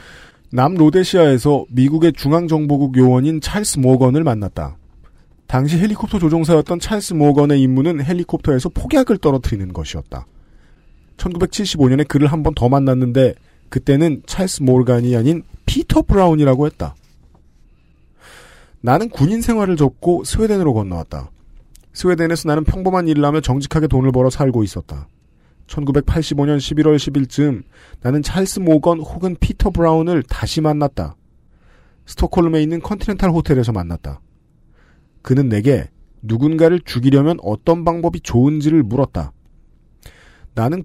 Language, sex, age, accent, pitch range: Korean, male, 40-59, native, 100-165 Hz